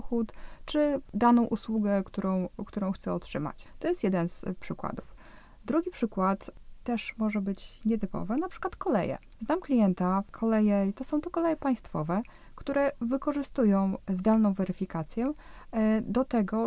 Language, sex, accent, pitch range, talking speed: Polish, female, native, 195-245 Hz, 125 wpm